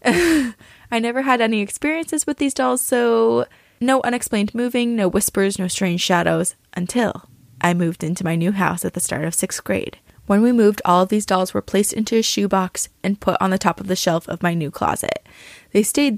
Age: 20-39